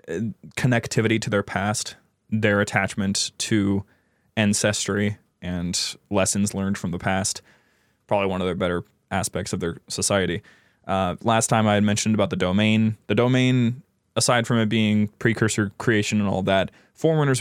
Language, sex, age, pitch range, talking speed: English, male, 20-39, 100-120 Hz, 150 wpm